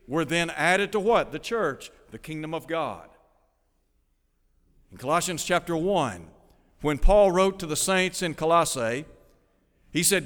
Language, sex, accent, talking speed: English, male, American, 145 wpm